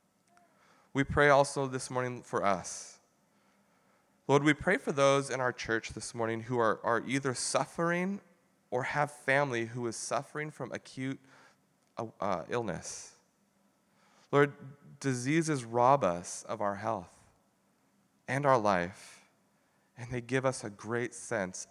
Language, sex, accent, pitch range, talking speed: English, male, American, 110-140 Hz, 140 wpm